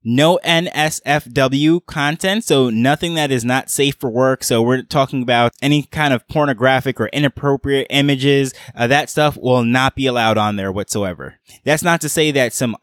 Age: 20-39